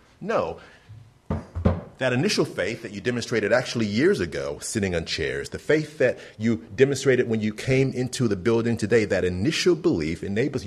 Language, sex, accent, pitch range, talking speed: English, male, American, 110-140 Hz, 165 wpm